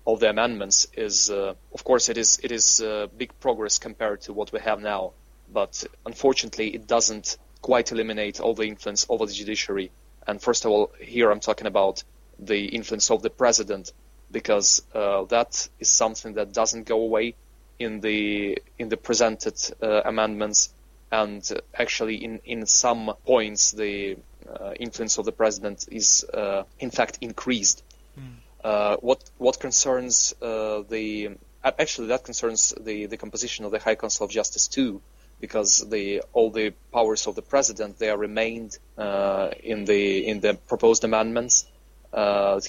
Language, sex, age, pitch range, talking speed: English, male, 20-39, 105-115 Hz, 160 wpm